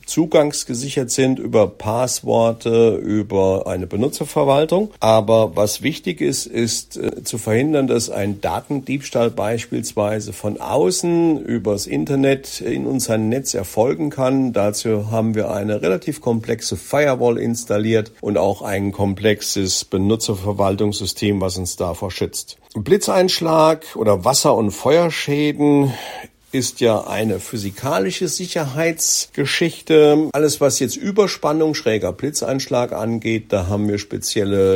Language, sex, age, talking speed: German, male, 50-69, 110 wpm